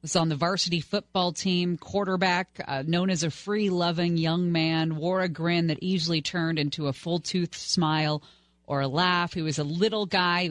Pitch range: 135-175 Hz